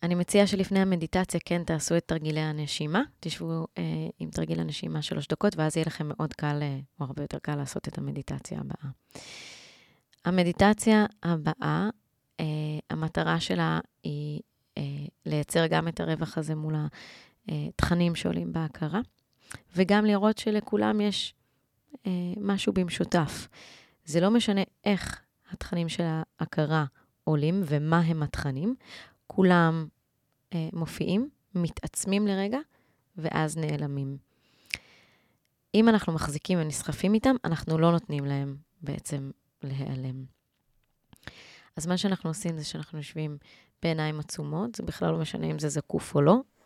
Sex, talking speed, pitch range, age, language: female, 130 wpm, 140-180 Hz, 20-39, Hebrew